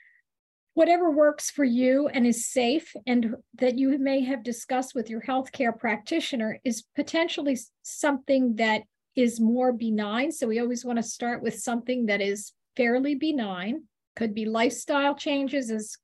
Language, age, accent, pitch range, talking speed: English, 50-69, American, 225-275 Hz, 155 wpm